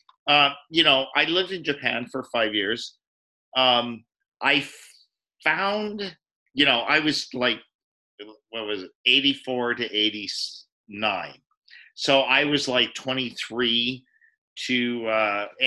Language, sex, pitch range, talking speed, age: English, male, 105-135 Hz, 120 wpm, 50-69